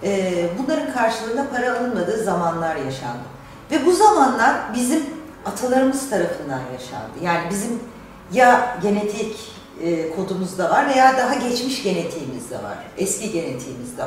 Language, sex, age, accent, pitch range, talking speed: Turkish, female, 40-59, native, 180-265 Hz, 120 wpm